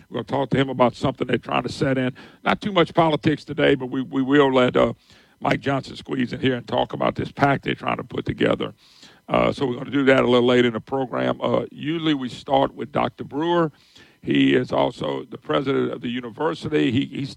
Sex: male